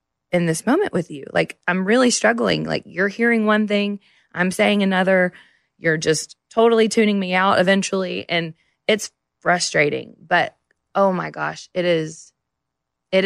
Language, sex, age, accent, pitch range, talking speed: English, female, 20-39, American, 145-185 Hz, 155 wpm